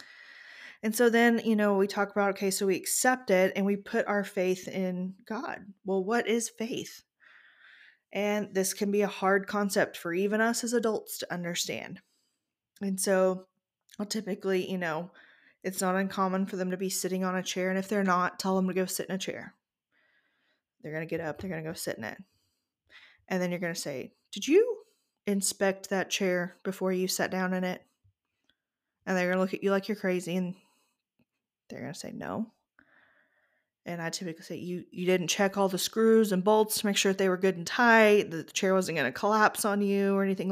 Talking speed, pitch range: 215 wpm, 185-215 Hz